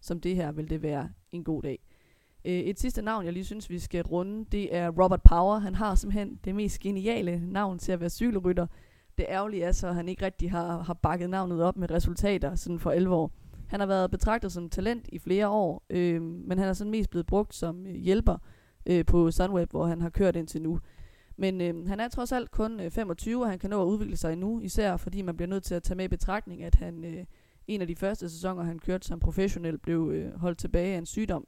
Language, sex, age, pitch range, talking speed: Danish, female, 20-39, 170-195 Hz, 235 wpm